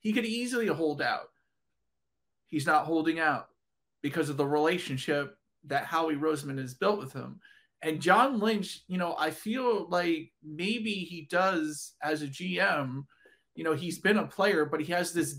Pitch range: 155-215 Hz